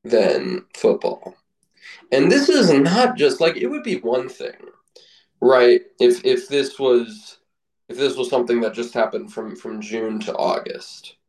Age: 20-39